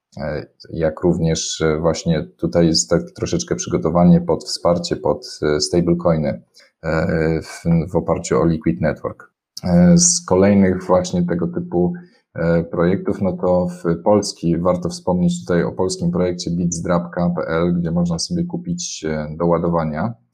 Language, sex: Polish, male